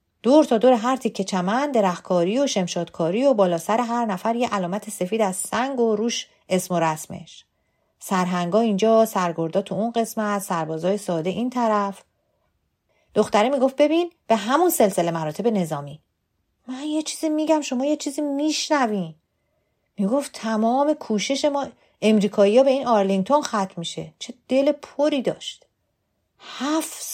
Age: 40-59